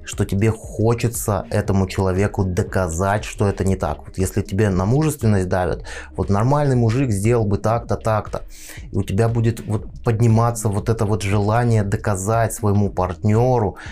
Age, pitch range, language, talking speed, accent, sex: 20-39, 95-110 Hz, Russian, 155 wpm, native, male